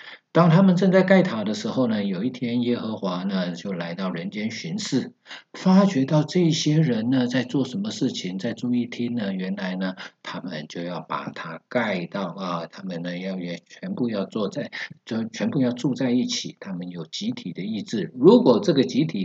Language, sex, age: Chinese, male, 50-69